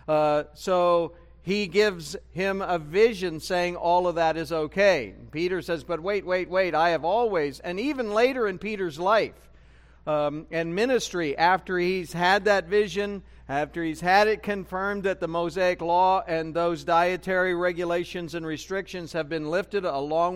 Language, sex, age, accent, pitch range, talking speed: English, male, 50-69, American, 170-200 Hz, 160 wpm